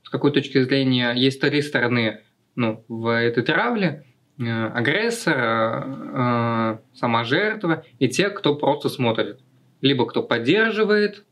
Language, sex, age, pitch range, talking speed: Russian, male, 20-39, 115-145 Hz, 125 wpm